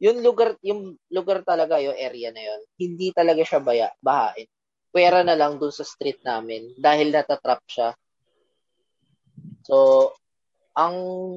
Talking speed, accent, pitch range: 130 wpm, native, 120-165 Hz